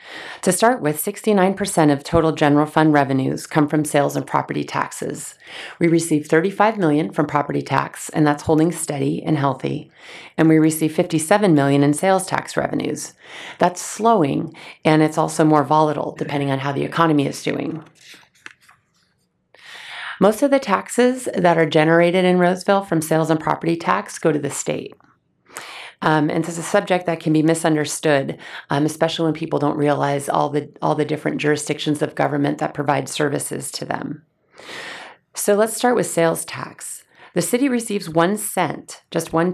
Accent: American